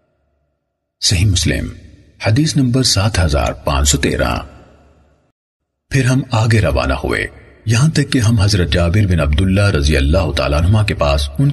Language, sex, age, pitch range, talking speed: Urdu, male, 40-59, 80-130 Hz, 130 wpm